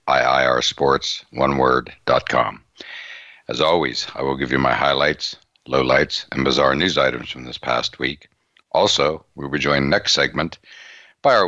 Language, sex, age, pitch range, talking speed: English, male, 60-79, 65-80 Hz, 140 wpm